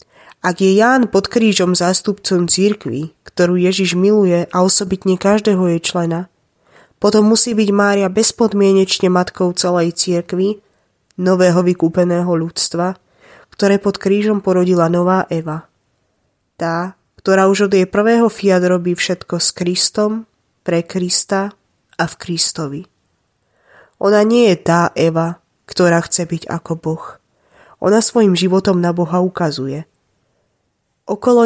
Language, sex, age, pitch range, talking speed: Slovak, female, 20-39, 175-200 Hz, 120 wpm